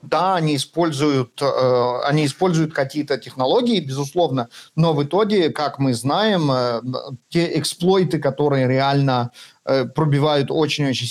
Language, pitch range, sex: Russian, 130-165 Hz, male